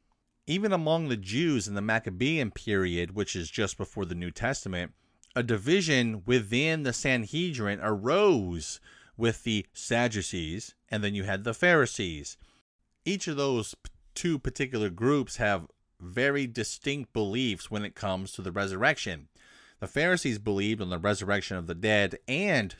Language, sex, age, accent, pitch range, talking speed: English, male, 30-49, American, 95-125 Hz, 145 wpm